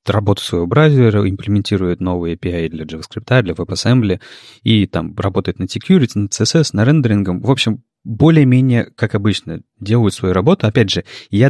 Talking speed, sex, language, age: 155 wpm, male, Russian, 30-49